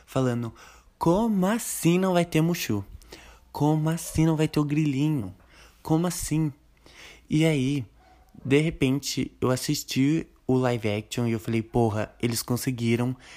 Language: Portuguese